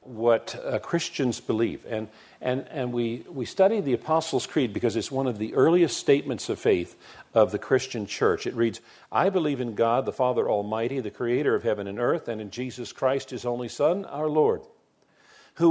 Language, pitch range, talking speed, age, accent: English, 120-175 Hz, 195 wpm, 50-69, American